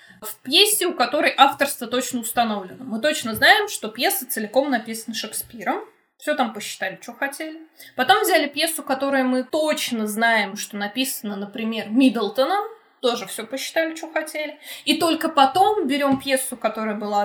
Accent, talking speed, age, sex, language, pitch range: native, 150 wpm, 20-39, female, Russian, 230-300 Hz